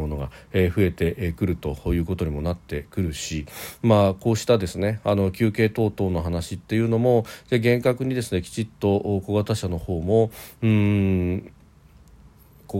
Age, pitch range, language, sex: 40-59, 85-115 Hz, Japanese, male